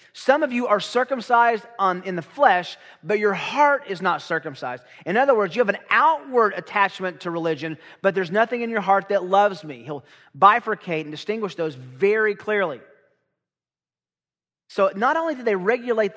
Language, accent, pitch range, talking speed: English, American, 155-210 Hz, 175 wpm